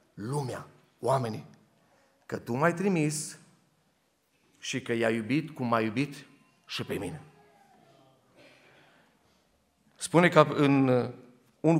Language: Romanian